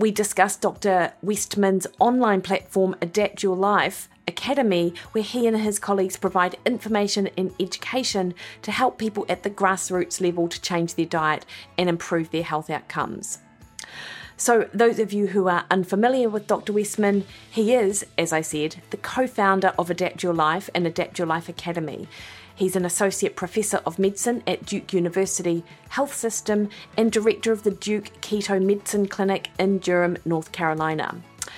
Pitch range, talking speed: 175-210 Hz, 160 wpm